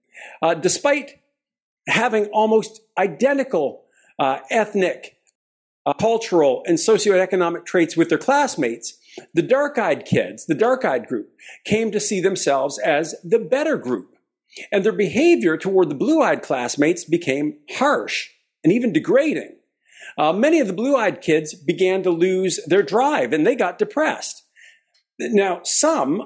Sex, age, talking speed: male, 50-69, 135 wpm